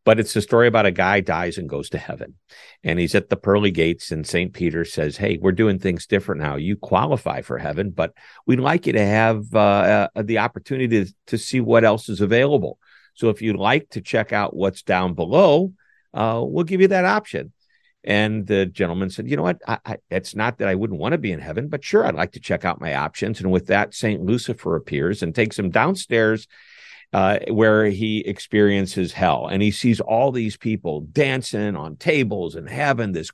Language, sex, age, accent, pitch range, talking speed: English, male, 50-69, American, 100-140 Hz, 215 wpm